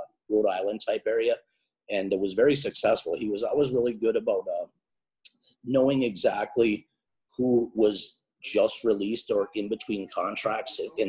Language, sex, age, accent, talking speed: English, male, 30-49, American, 145 wpm